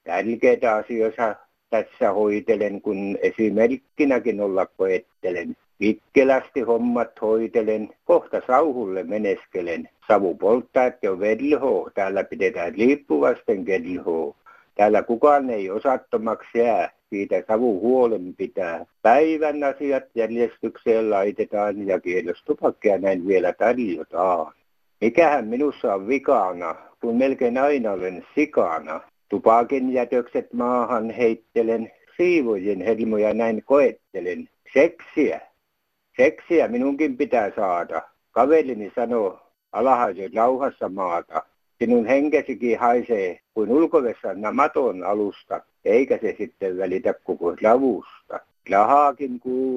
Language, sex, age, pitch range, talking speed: Finnish, male, 60-79, 110-145 Hz, 100 wpm